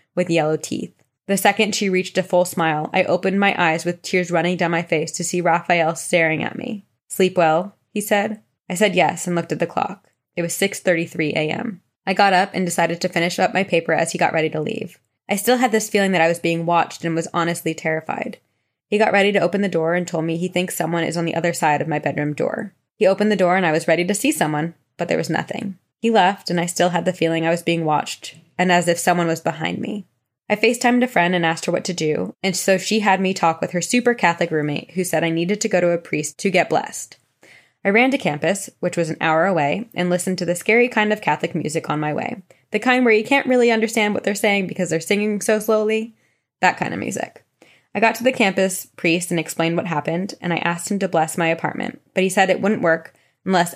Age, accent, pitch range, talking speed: 20-39, American, 165-205 Hz, 250 wpm